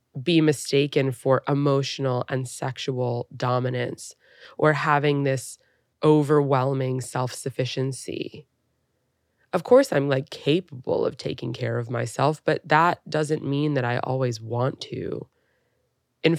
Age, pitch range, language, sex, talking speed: 20-39, 130-160 Hz, English, female, 115 wpm